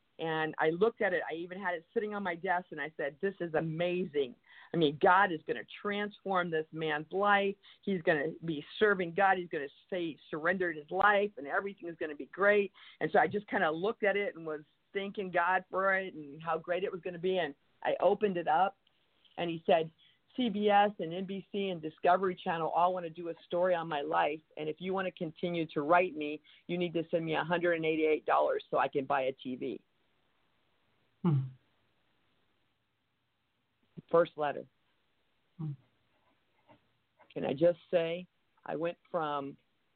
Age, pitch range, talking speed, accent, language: 50-69, 150-185 Hz, 190 wpm, American, English